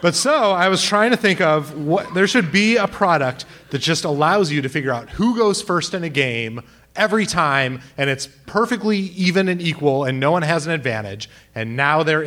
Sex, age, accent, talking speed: male, 30-49, American, 215 wpm